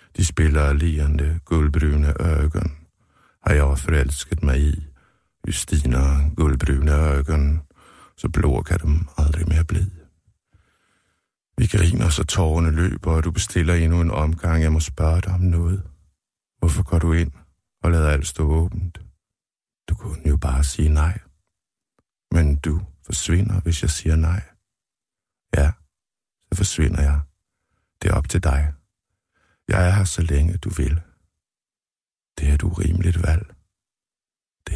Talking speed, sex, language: 140 wpm, male, Danish